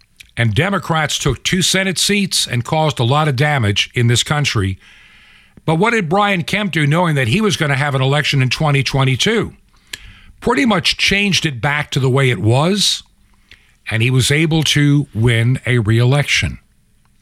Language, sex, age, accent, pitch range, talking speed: English, male, 60-79, American, 120-165 Hz, 175 wpm